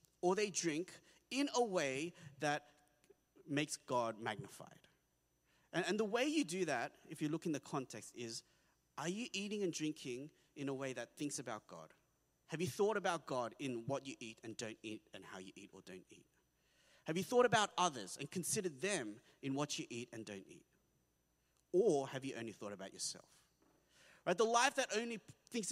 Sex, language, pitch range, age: male, English, 135-195 Hz, 30-49